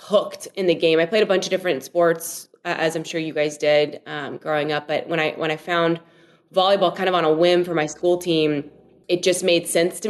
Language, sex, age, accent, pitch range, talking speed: English, female, 20-39, American, 160-195 Hz, 250 wpm